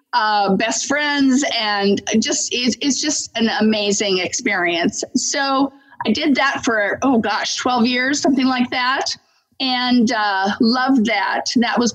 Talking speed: 145 wpm